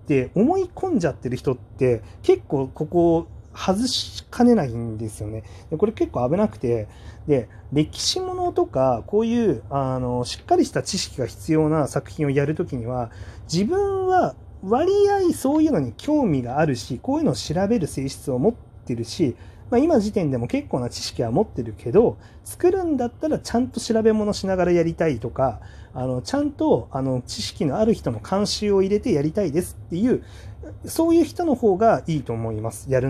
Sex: male